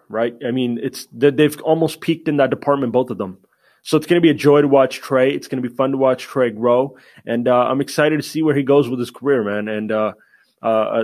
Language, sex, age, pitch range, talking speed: English, male, 20-39, 120-140 Hz, 260 wpm